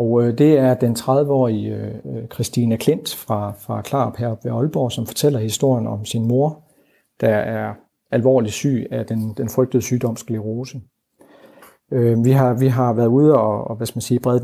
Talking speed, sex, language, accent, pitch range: 145 wpm, male, Danish, native, 115-130 Hz